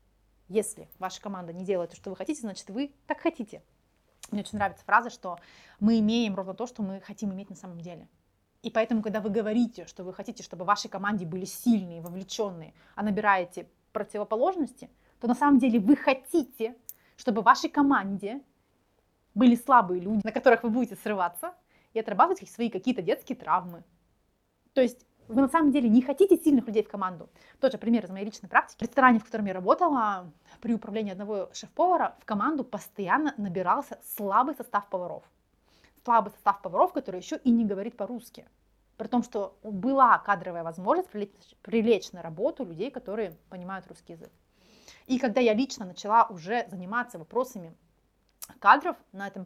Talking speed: 170 wpm